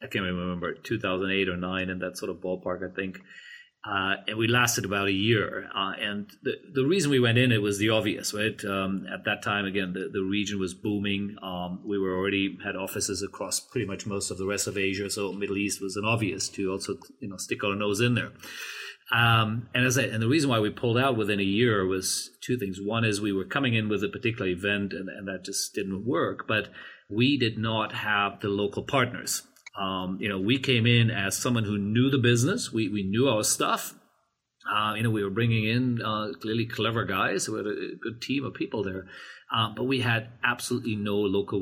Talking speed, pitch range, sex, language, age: 230 wpm, 95-115 Hz, male, English, 40-59